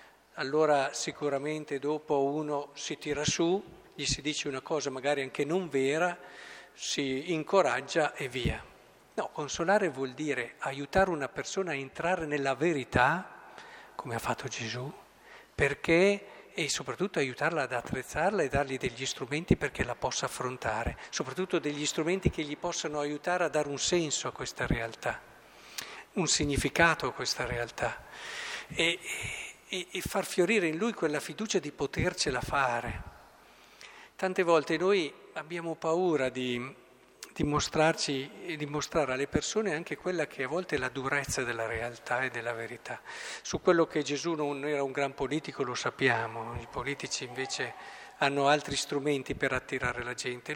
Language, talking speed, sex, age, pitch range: Italian, 150 wpm, male, 50-69, 135-160 Hz